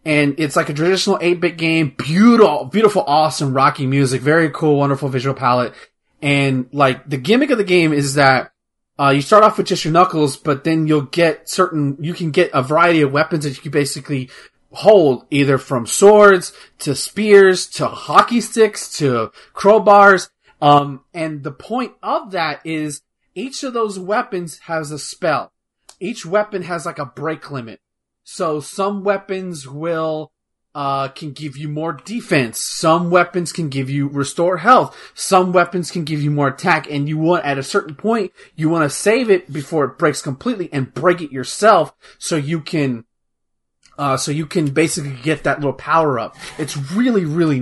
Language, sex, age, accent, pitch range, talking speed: English, male, 30-49, American, 140-175 Hz, 180 wpm